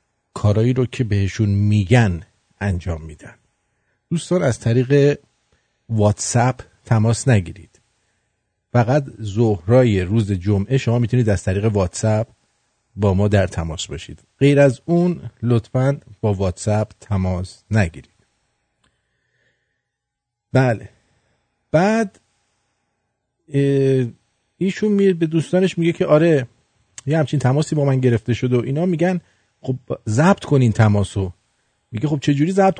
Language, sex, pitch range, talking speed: English, male, 105-140 Hz, 110 wpm